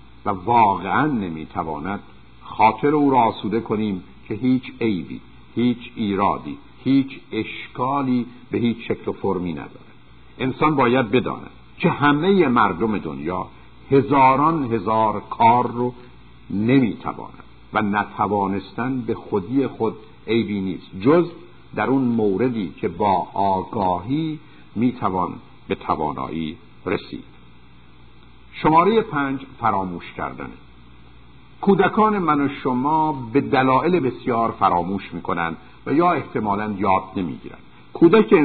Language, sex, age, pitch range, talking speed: Persian, male, 60-79, 100-135 Hz, 110 wpm